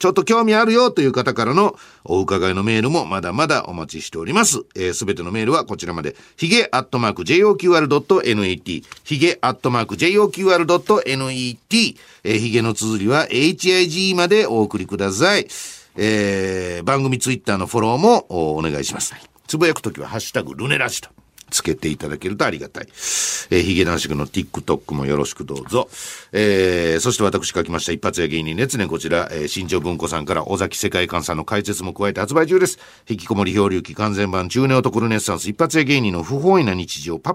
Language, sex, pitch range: Japanese, male, 90-140 Hz